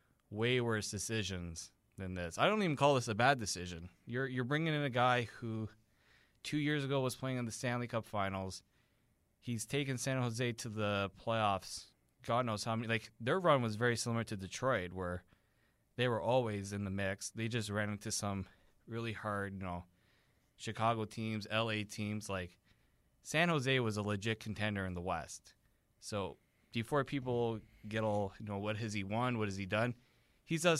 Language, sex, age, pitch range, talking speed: English, male, 20-39, 100-120 Hz, 185 wpm